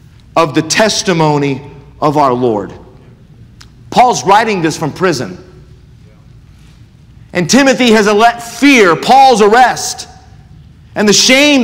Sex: male